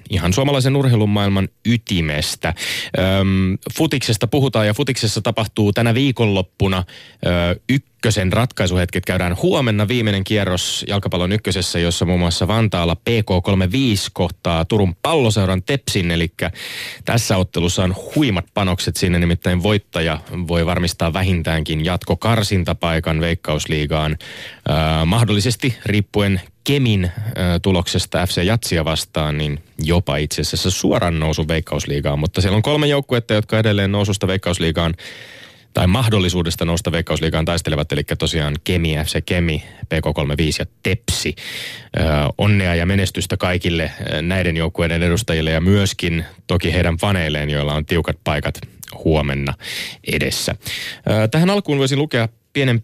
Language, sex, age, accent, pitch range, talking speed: Finnish, male, 30-49, native, 85-110 Hz, 120 wpm